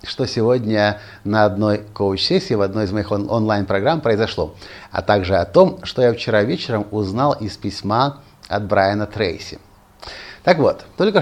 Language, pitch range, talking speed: Russian, 105-155 Hz, 150 wpm